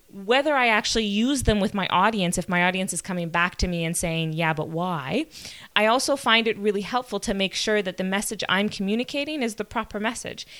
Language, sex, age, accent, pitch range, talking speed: English, female, 20-39, American, 175-220 Hz, 220 wpm